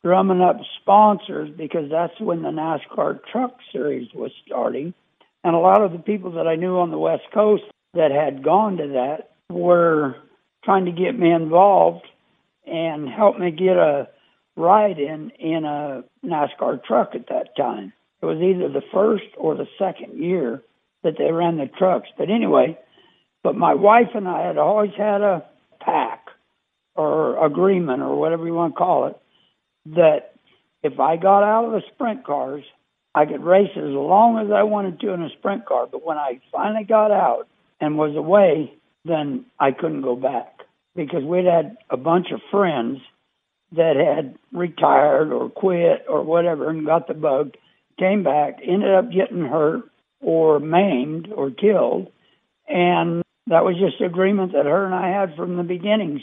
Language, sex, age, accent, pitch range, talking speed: English, male, 60-79, American, 160-200 Hz, 175 wpm